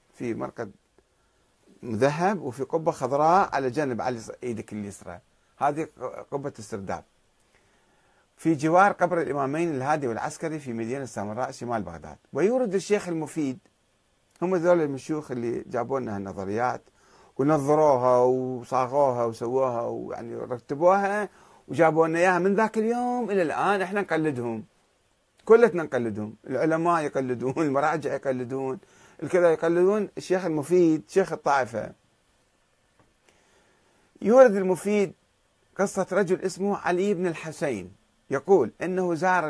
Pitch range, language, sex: 130-180 Hz, Arabic, male